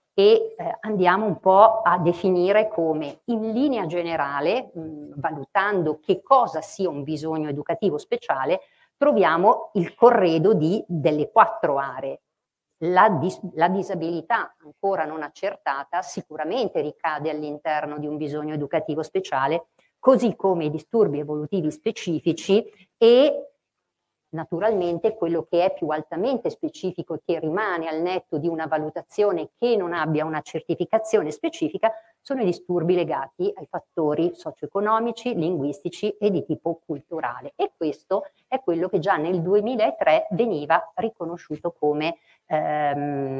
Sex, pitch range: female, 155-220 Hz